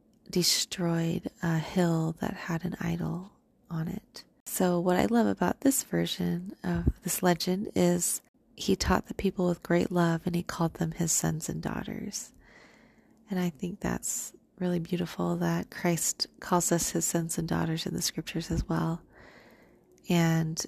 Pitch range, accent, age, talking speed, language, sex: 165-185 Hz, American, 30-49, 160 wpm, English, female